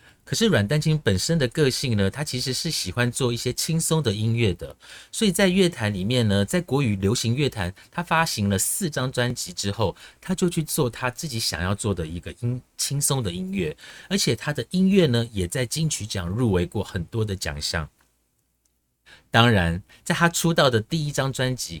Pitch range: 95-150 Hz